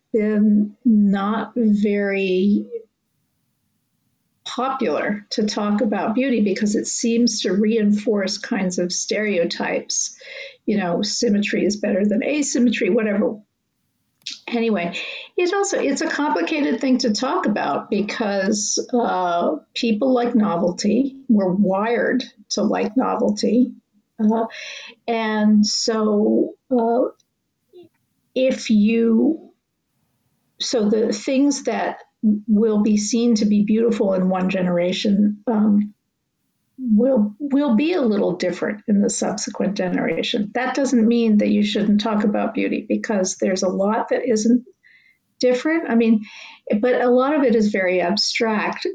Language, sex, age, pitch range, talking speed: English, female, 50-69, 210-250 Hz, 125 wpm